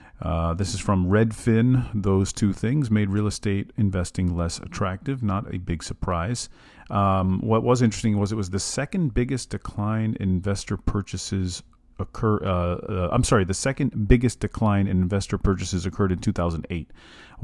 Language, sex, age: English, male, 40-59